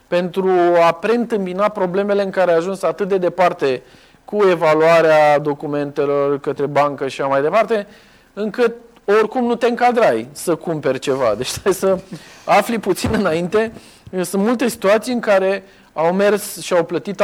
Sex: male